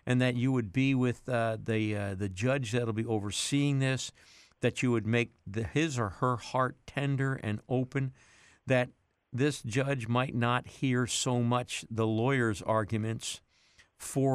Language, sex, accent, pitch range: English, male, American, 110-130 Hz